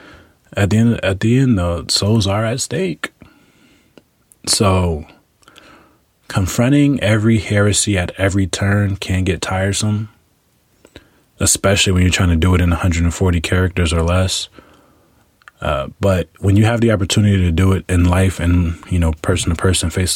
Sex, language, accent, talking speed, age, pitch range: male, English, American, 155 wpm, 20-39, 85-100 Hz